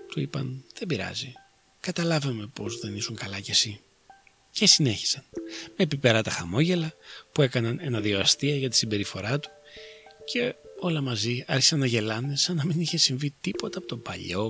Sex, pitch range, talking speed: male, 120-185 Hz, 155 wpm